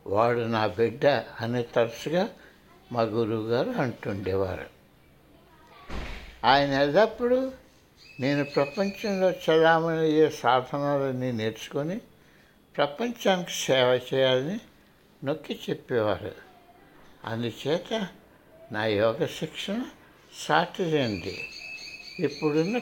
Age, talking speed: 60-79, 70 wpm